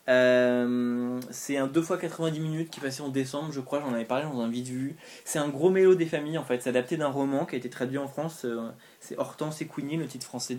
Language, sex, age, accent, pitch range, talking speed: French, male, 20-39, French, 125-145 Hz, 260 wpm